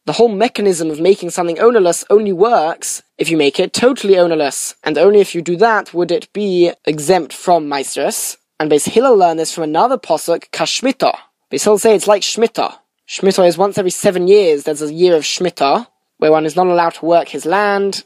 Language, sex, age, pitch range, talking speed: English, male, 10-29, 165-210 Hz, 205 wpm